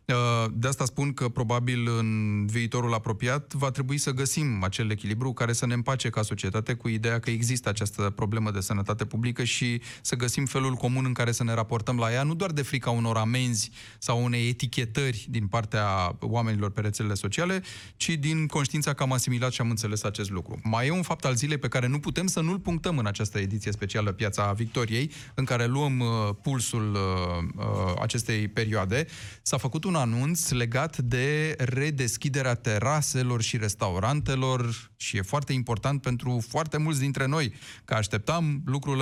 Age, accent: 30-49, native